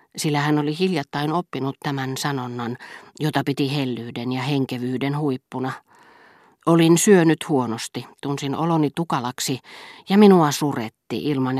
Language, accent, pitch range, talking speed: Finnish, native, 130-165 Hz, 120 wpm